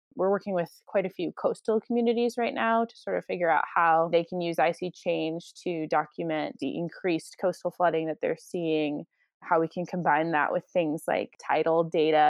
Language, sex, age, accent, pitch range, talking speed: English, female, 20-39, American, 170-225 Hz, 195 wpm